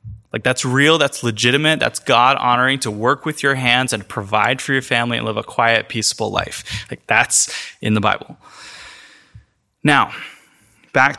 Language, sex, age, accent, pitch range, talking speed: English, male, 20-39, American, 125-155 Hz, 165 wpm